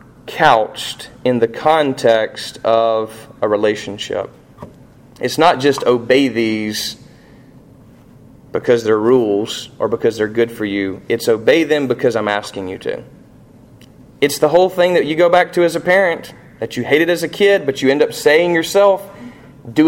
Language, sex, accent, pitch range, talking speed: English, male, American, 125-195 Hz, 165 wpm